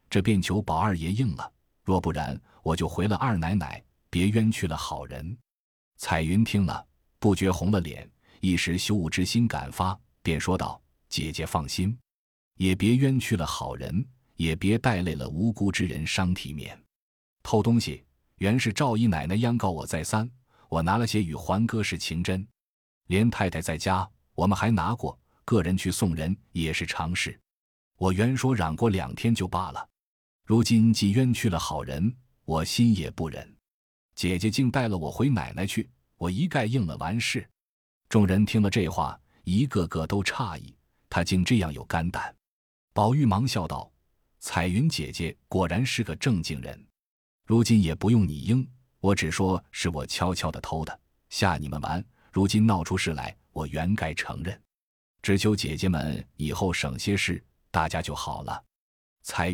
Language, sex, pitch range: Chinese, male, 80-110 Hz